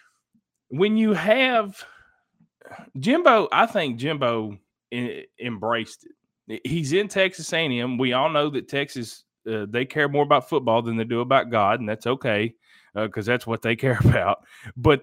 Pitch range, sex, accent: 115-170 Hz, male, American